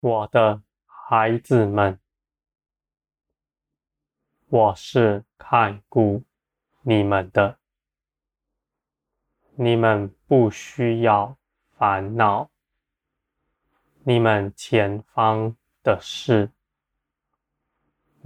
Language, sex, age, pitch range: Chinese, male, 20-39, 95-120 Hz